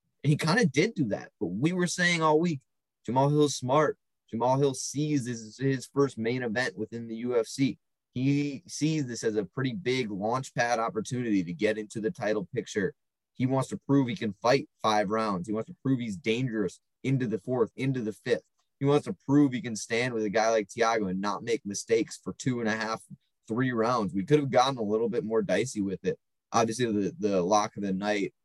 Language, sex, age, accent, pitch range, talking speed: English, male, 20-39, American, 105-135 Hz, 220 wpm